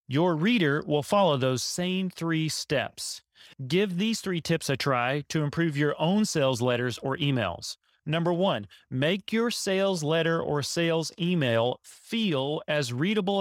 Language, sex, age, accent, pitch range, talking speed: English, male, 30-49, American, 125-180 Hz, 150 wpm